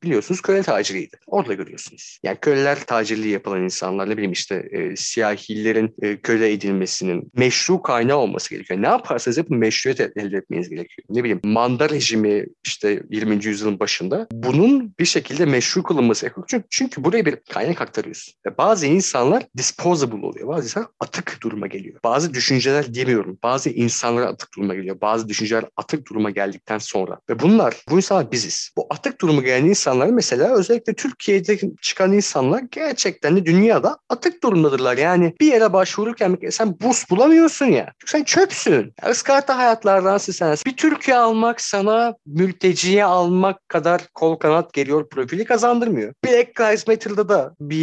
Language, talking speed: Turkish, 150 wpm